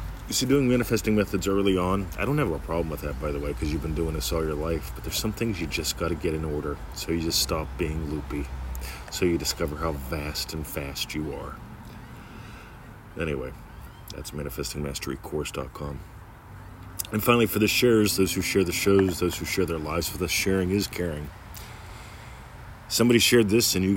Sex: male